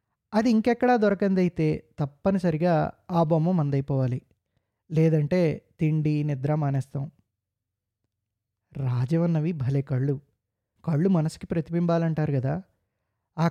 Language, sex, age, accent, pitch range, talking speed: Telugu, male, 20-39, native, 135-175 Hz, 85 wpm